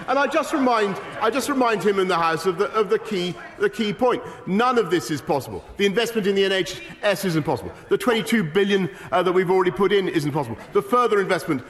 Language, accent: English, British